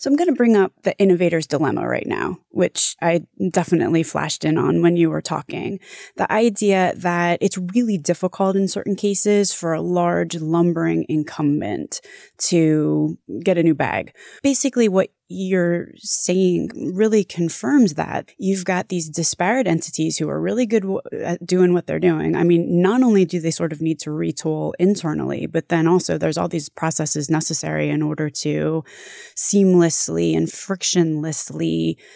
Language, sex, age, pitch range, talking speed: English, female, 20-39, 160-200 Hz, 165 wpm